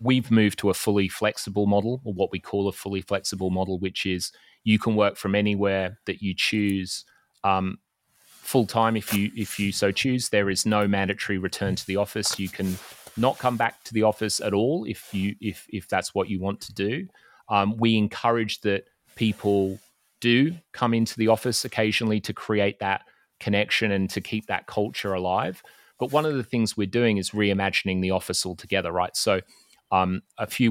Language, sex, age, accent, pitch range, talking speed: English, male, 30-49, Australian, 95-110 Hz, 195 wpm